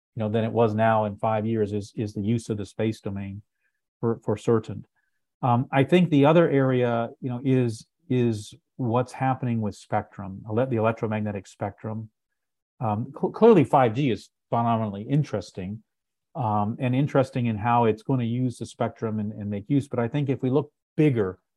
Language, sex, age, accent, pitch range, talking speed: English, male, 40-59, American, 110-130 Hz, 180 wpm